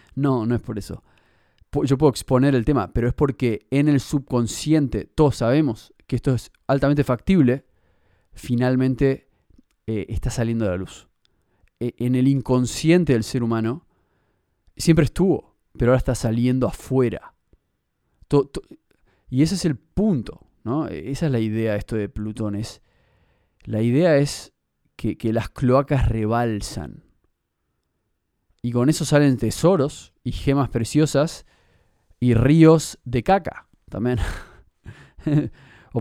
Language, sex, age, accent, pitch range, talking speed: Spanish, male, 20-39, Argentinian, 110-145 Hz, 130 wpm